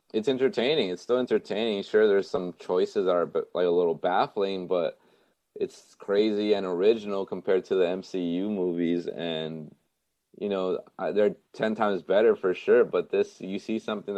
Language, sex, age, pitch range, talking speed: English, male, 20-39, 95-130 Hz, 165 wpm